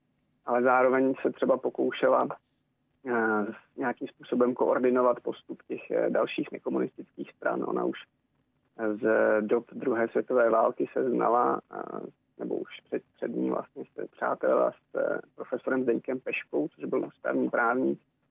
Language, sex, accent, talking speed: Czech, male, native, 120 wpm